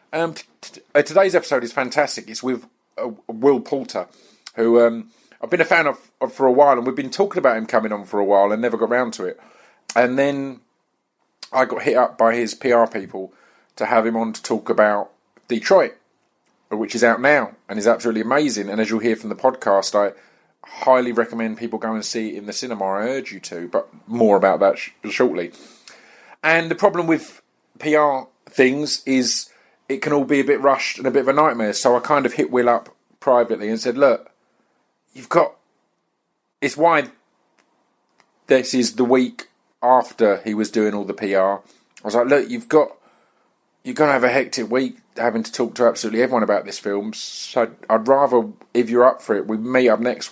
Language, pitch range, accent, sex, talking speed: English, 110-140 Hz, British, male, 205 wpm